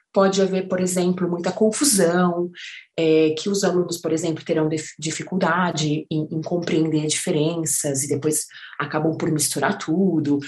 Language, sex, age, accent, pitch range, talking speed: Portuguese, female, 30-49, Brazilian, 155-190 Hz, 145 wpm